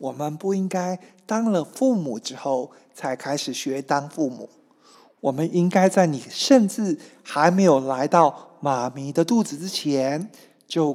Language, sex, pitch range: Chinese, male, 145-210 Hz